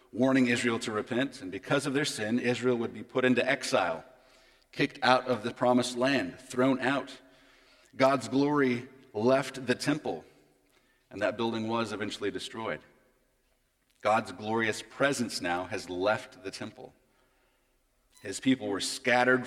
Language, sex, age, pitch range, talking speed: English, male, 40-59, 125-130 Hz, 140 wpm